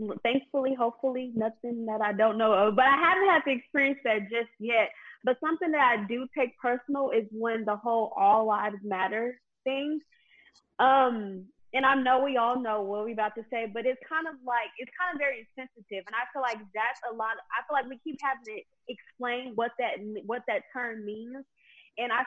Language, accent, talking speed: English, American, 210 wpm